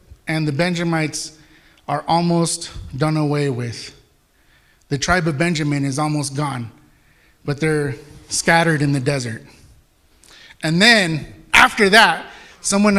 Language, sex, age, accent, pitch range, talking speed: English, male, 30-49, American, 155-200 Hz, 120 wpm